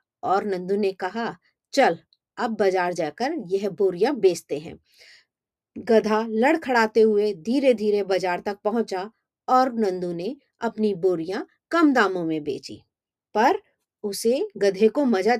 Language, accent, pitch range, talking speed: Hindi, native, 195-270 Hz, 135 wpm